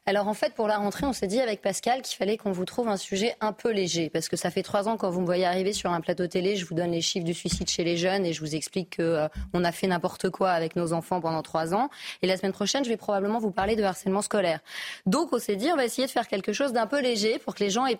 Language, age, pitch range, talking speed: French, 30-49, 170-215 Hz, 305 wpm